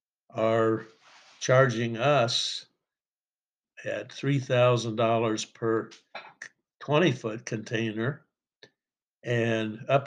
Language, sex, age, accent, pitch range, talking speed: English, male, 60-79, American, 110-130 Hz, 60 wpm